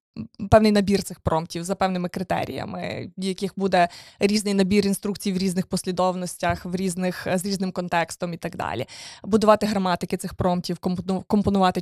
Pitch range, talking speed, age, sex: 180-205 Hz, 145 wpm, 20-39, female